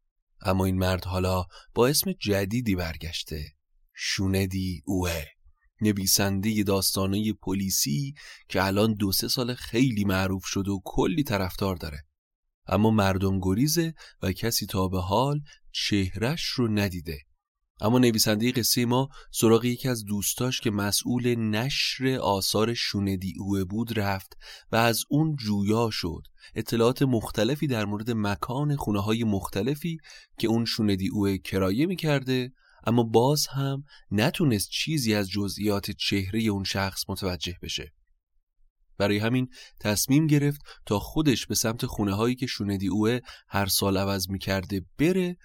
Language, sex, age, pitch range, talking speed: Persian, male, 30-49, 95-120 Hz, 135 wpm